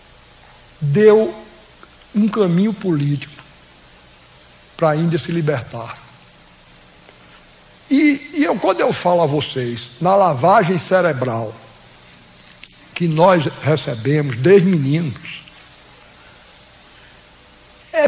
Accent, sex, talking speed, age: Brazilian, male, 85 wpm, 60-79